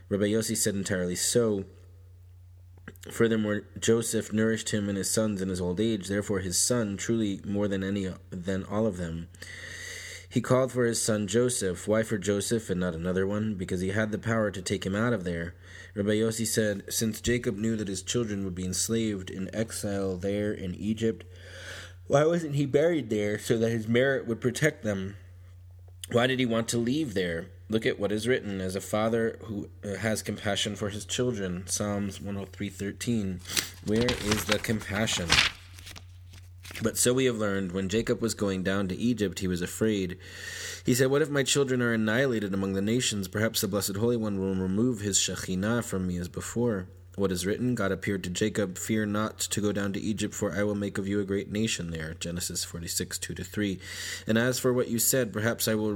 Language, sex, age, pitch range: English, male, 20-39, 95-110 Hz